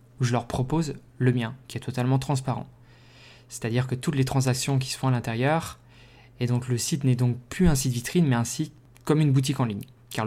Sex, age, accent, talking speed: male, 20-39, French, 230 wpm